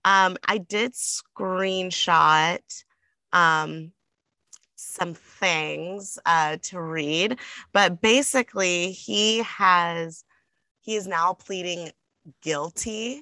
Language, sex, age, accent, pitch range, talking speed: English, female, 20-39, American, 155-190 Hz, 85 wpm